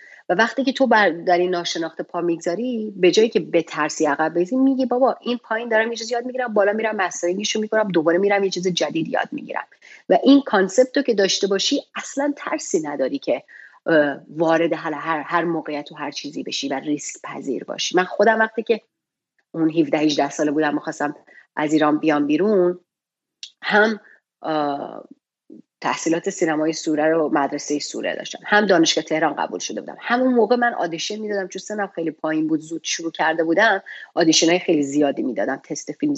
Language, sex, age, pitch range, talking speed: Persian, female, 30-49, 165-265 Hz, 175 wpm